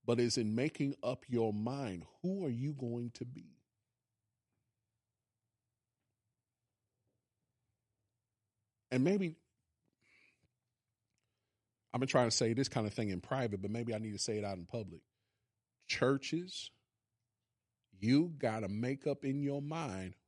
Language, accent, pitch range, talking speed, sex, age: English, American, 110-130 Hz, 135 wpm, male, 40-59